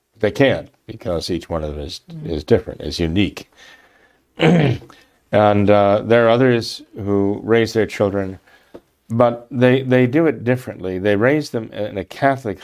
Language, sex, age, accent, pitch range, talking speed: English, male, 50-69, American, 100-130 Hz, 155 wpm